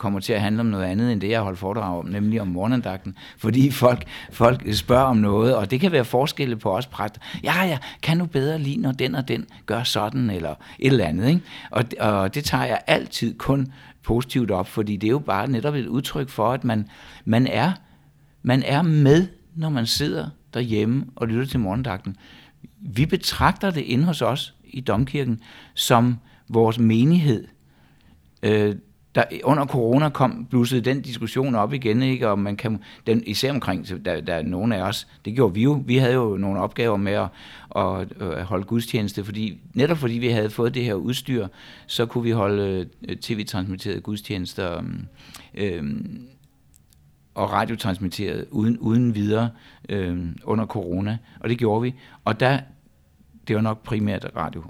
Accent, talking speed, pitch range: native, 180 wpm, 100-130 Hz